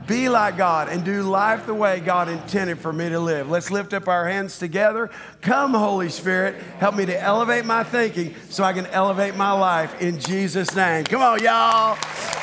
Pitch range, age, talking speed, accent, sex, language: 155-195 Hz, 50-69, 200 wpm, American, male, English